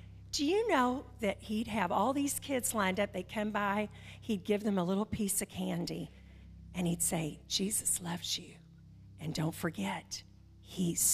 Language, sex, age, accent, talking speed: English, female, 40-59, American, 170 wpm